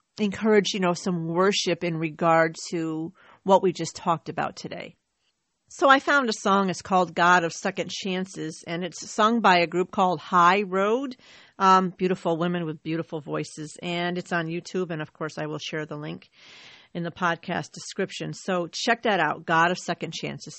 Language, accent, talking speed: English, American, 185 wpm